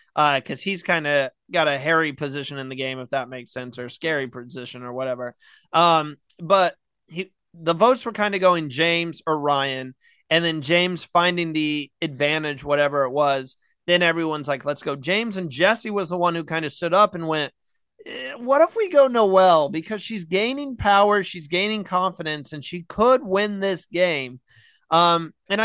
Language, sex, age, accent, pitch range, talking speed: English, male, 30-49, American, 150-195 Hz, 190 wpm